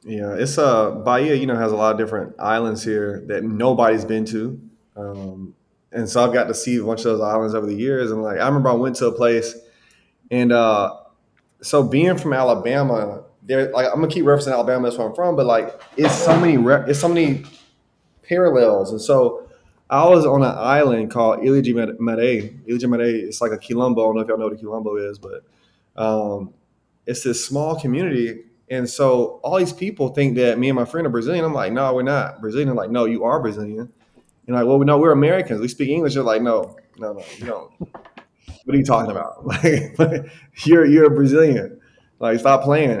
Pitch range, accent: 115-155 Hz, American